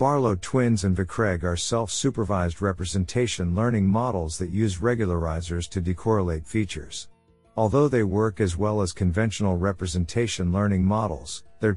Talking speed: 135 wpm